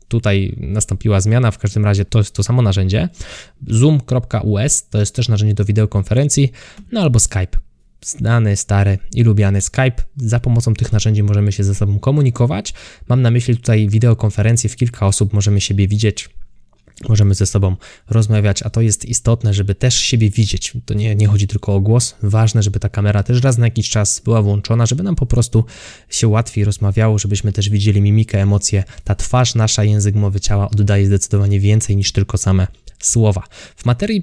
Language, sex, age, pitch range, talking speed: Polish, male, 20-39, 100-120 Hz, 180 wpm